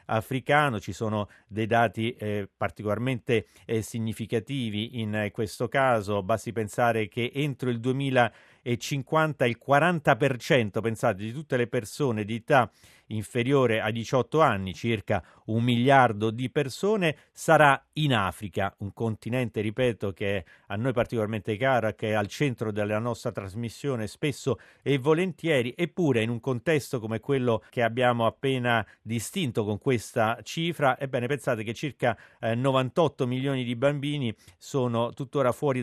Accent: native